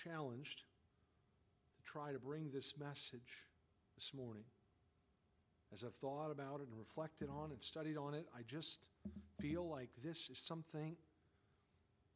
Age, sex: 50-69, male